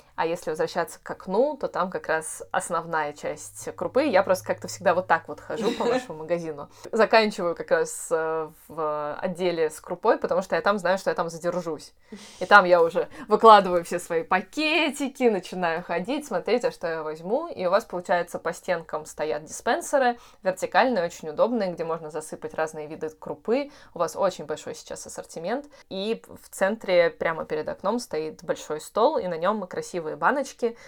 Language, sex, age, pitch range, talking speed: Russian, female, 20-39, 165-230 Hz, 180 wpm